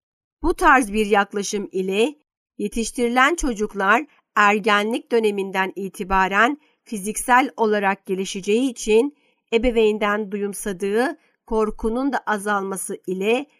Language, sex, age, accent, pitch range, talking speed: Turkish, female, 50-69, native, 200-240 Hz, 90 wpm